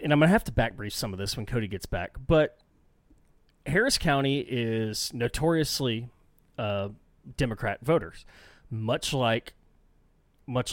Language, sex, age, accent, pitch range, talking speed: English, male, 30-49, American, 105-130 Hz, 150 wpm